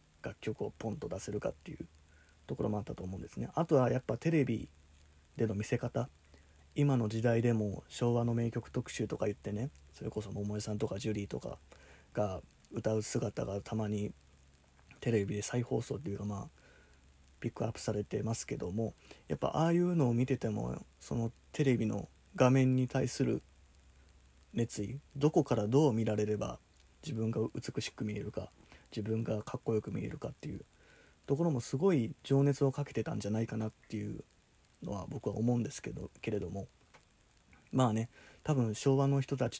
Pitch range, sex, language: 105-130 Hz, male, Japanese